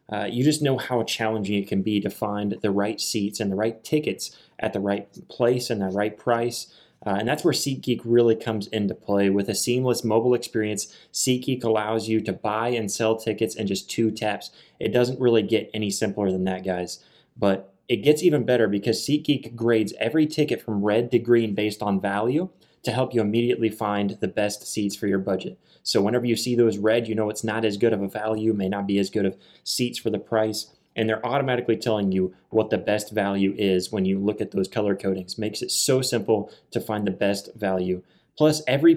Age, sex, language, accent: 20-39, male, English, American